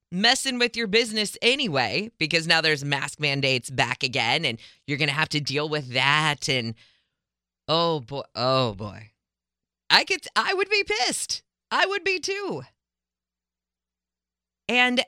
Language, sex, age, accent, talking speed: English, female, 30-49, American, 145 wpm